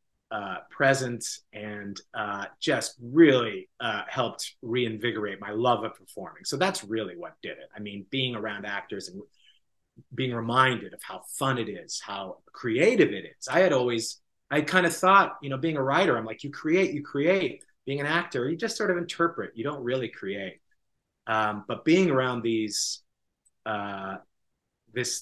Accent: American